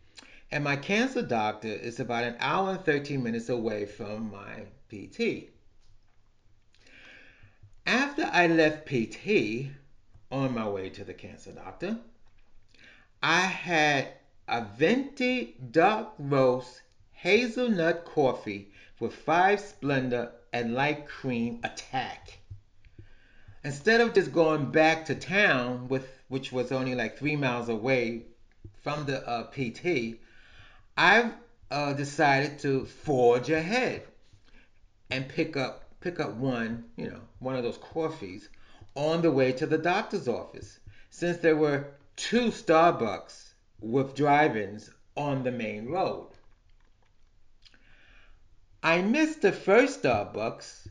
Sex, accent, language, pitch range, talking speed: male, American, English, 105-155 Hz, 120 wpm